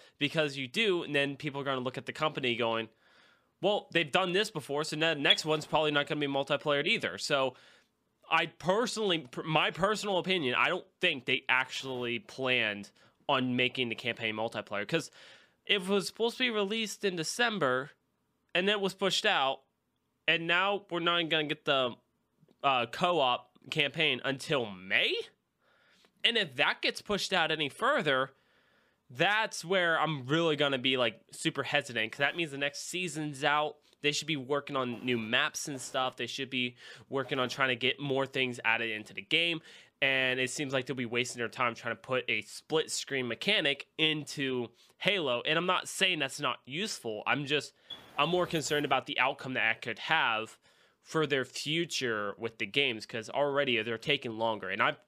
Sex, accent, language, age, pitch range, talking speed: male, American, English, 20-39, 125-165 Hz, 185 wpm